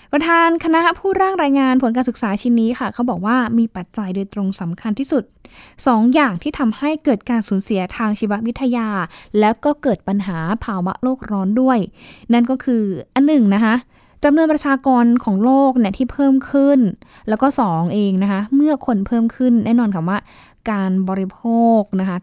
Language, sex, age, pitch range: Thai, female, 10-29, 195-255 Hz